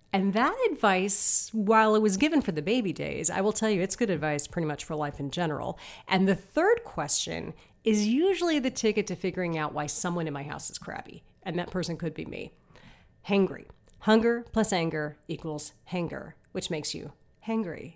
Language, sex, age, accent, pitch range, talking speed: English, female, 30-49, American, 160-215 Hz, 195 wpm